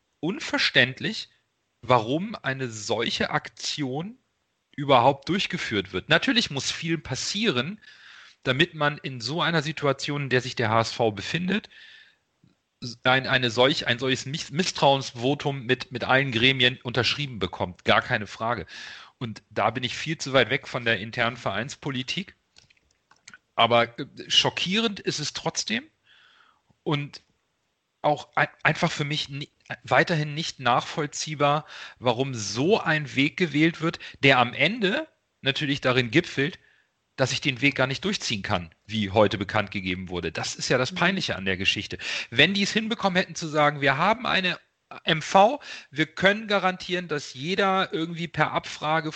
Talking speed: 145 wpm